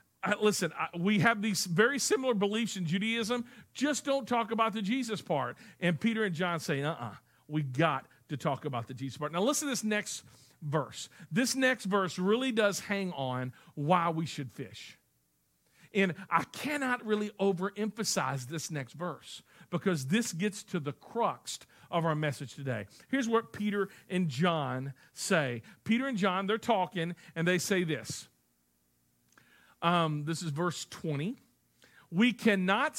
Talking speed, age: 160 wpm, 50-69